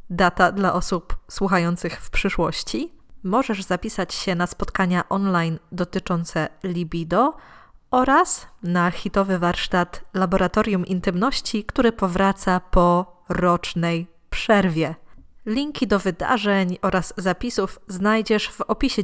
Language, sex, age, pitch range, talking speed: Polish, female, 20-39, 180-220 Hz, 105 wpm